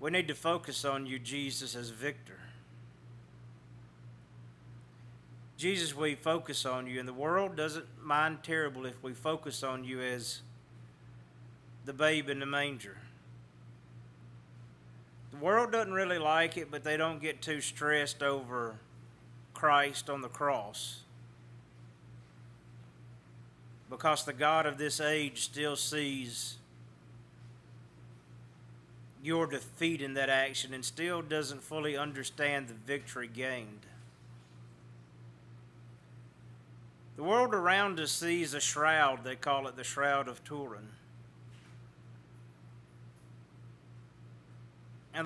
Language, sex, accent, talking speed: English, male, American, 110 wpm